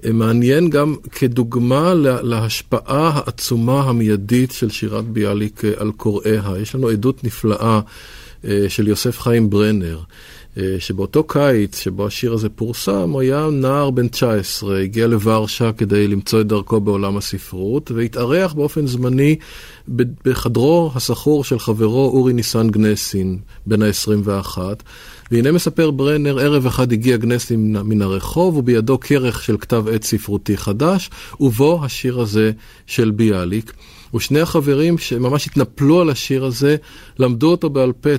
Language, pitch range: Hebrew, 110-140 Hz